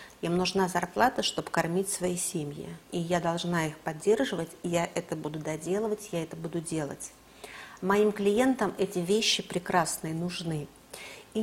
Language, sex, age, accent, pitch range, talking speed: Russian, female, 50-69, native, 165-200 Hz, 145 wpm